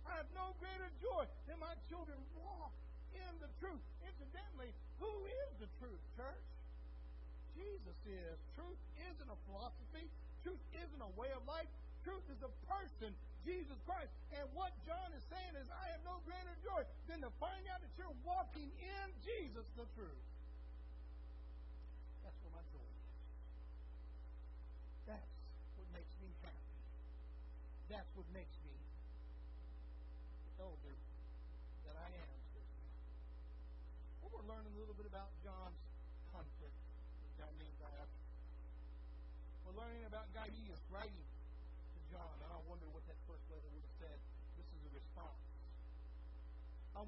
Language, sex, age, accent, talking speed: English, male, 60-79, American, 140 wpm